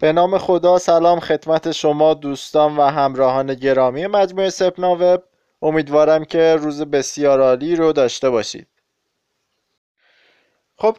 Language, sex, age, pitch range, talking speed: Persian, male, 20-39, 130-175 Hz, 120 wpm